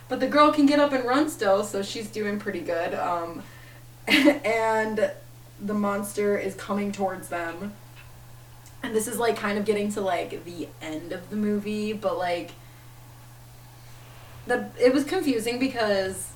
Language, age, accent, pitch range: English, 20-39, American, 155-210 Hz